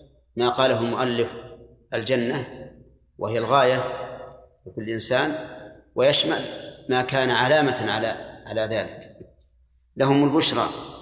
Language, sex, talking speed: Arabic, male, 95 wpm